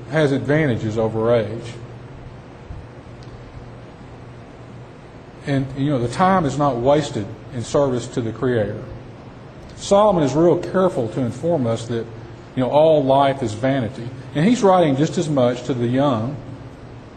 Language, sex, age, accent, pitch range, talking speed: English, male, 40-59, American, 120-140 Hz, 140 wpm